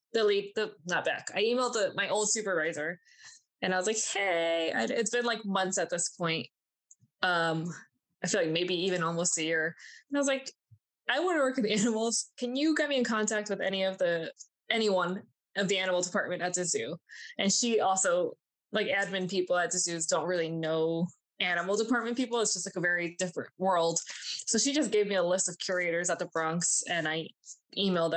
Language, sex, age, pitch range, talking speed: English, female, 20-39, 175-225 Hz, 200 wpm